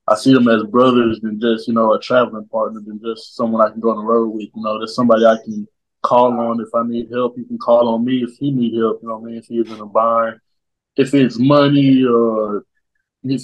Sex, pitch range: male, 120-145 Hz